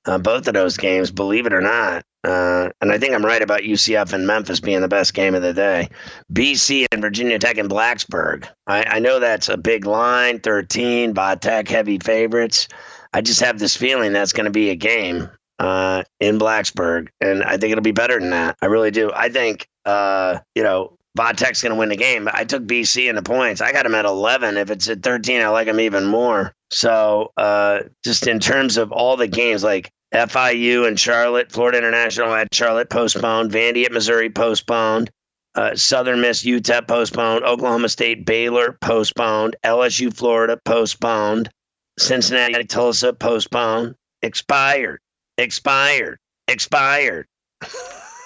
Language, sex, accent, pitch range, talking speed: English, male, American, 105-120 Hz, 175 wpm